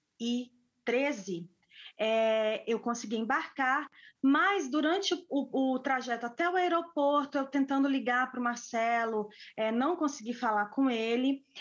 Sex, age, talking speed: female, 20-39, 125 wpm